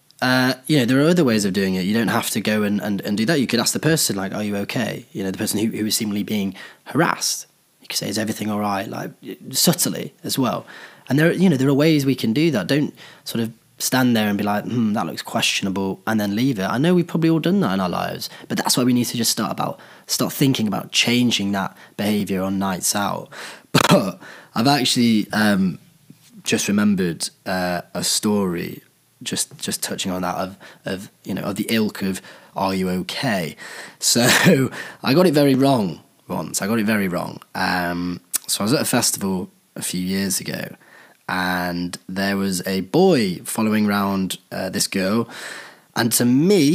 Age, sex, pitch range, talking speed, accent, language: 20-39, male, 95-125 Hz, 215 wpm, British, English